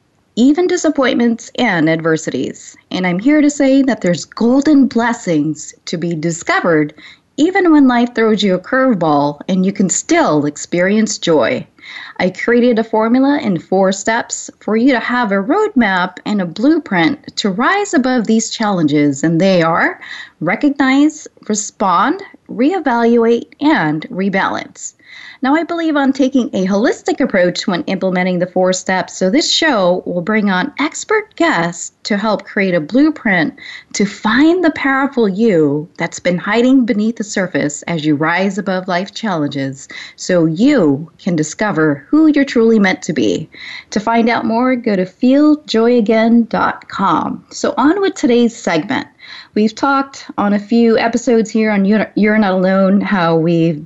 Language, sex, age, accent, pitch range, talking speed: English, female, 20-39, American, 180-260 Hz, 150 wpm